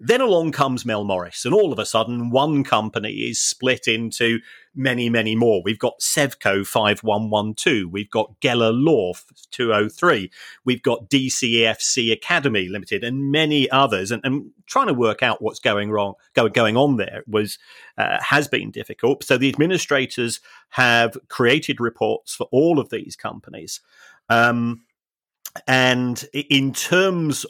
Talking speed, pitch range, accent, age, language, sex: 150 wpm, 110-135 Hz, British, 40-59, English, male